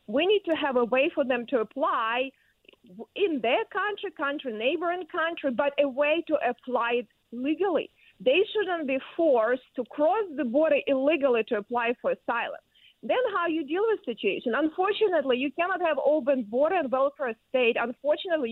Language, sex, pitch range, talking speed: English, female, 265-335 Hz, 170 wpm